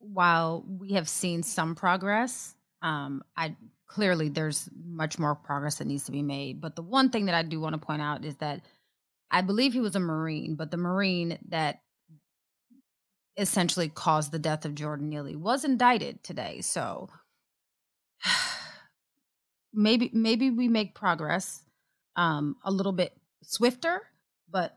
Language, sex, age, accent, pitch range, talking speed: English, female, 30-49, American, 165-235 Hz, 155 wpm